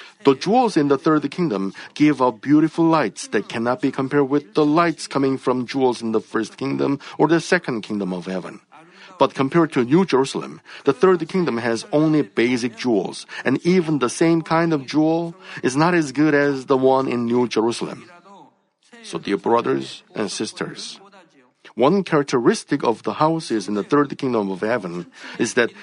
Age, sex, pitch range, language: 50-69, male, 115-160 Hz, Korean